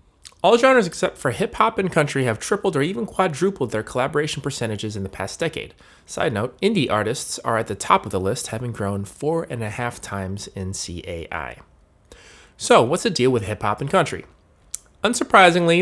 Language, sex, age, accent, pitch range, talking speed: English, male, 30-49, American, 110-150 Hz, 180 wpm